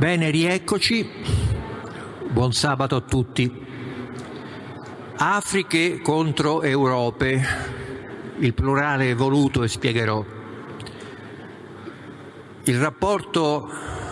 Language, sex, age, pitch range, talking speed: Italian, male, 50-69, 110-135 Hz, 70 wpm